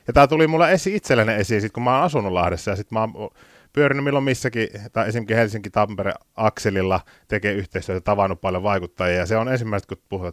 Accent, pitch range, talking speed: native, 95-125 Hz, 180 wpm